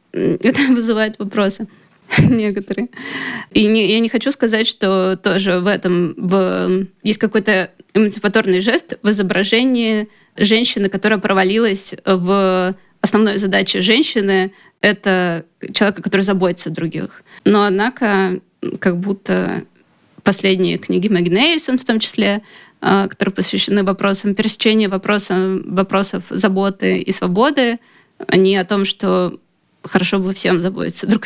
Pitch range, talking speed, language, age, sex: 190-220 Hz, 120 wpm, Russian, 20-39, female